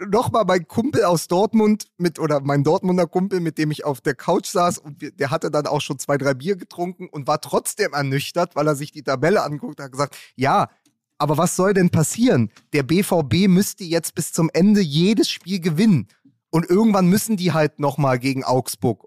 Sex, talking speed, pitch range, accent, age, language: male, 205 wpm, 145-185 Hz, German, 30-49, German